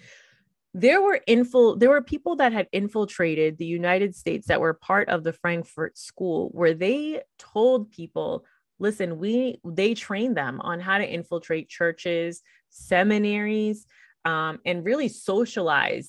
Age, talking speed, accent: 30-49, 140 wpm, American